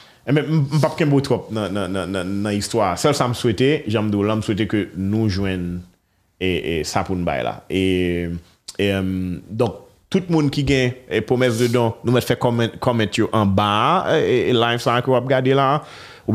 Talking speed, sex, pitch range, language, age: 190 wpm, male, 95-125 Hz, French, 30-49